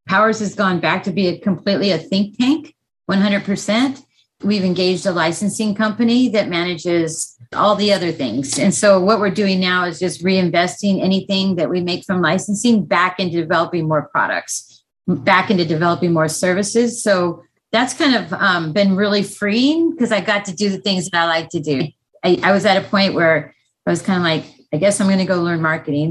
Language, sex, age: English, female, 30-49